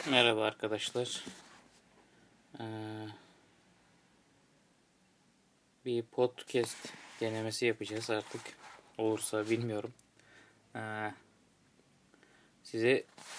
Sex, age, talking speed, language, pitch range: male, 20-39, 45 wpm, Turkish, 105-125 Hz